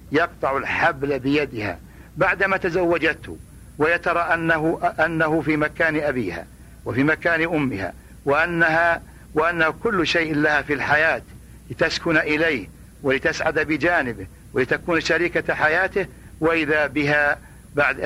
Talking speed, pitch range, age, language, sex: 105 wpm, 140-165 Hz, 60-79, Arabic, male